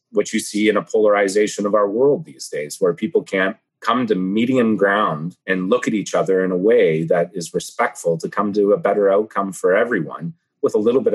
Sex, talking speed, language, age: male, 220 wpm, English, 30-49